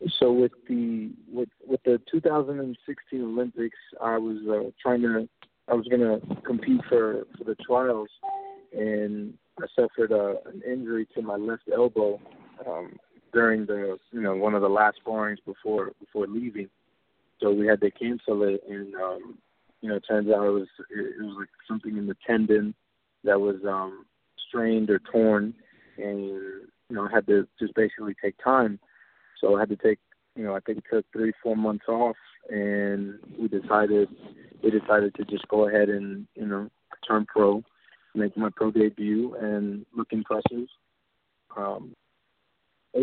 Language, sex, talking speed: English, male, 170 wpm